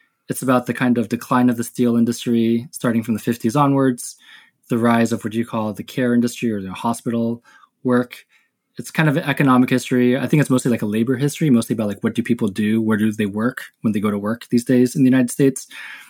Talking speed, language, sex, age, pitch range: 240 wpm, English, male, 20-39, 110-135 Hz